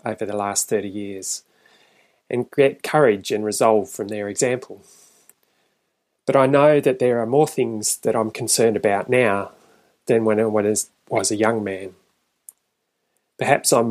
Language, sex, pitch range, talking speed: English, male, 110-135 Hz, 150 wpm